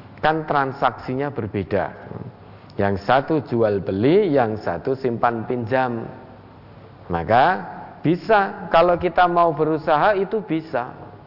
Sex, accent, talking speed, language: male, native, 100 wpm, Indonesian